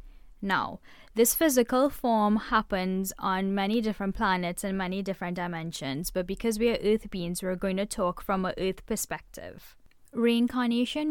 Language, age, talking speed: English, 10-29, 150 wpm